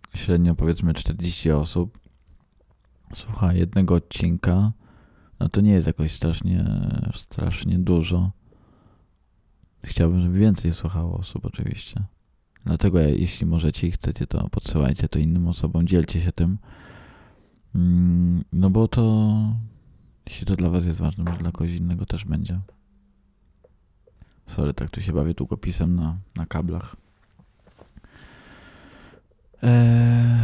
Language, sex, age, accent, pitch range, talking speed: Polish, male, 20-39, native, 80-100 Hz, 115 wpm